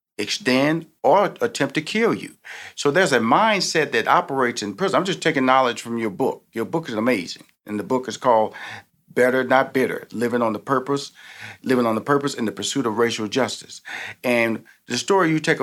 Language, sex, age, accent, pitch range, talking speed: English, male, 40-59, American, 130-190 Hz, 200 wpm